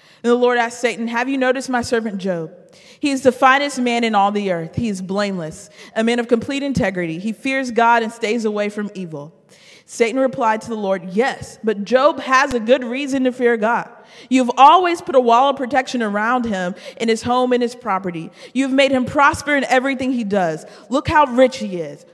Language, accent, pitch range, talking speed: English, American, 190-245 Hz, 215 wpm